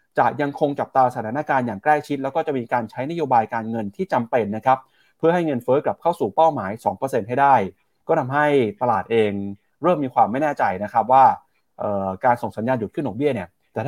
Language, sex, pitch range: Thai, male, 115-155 Hz